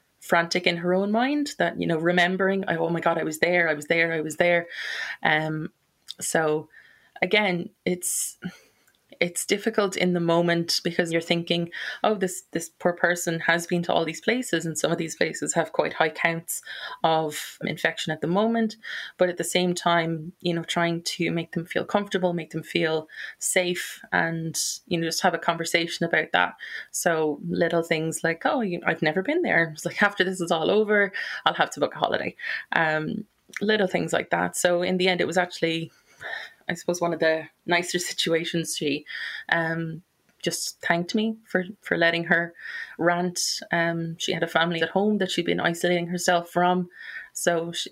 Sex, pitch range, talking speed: female, 165-180 Hz, 190 wpm